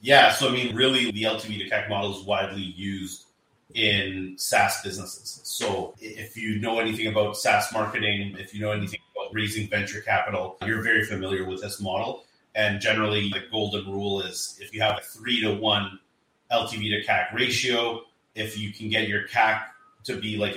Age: 30-49